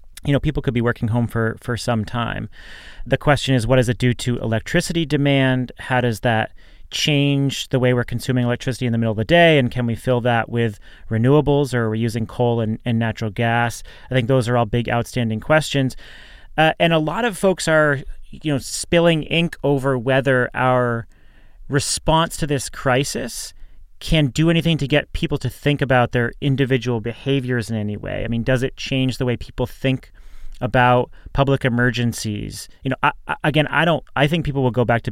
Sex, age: male, 30-49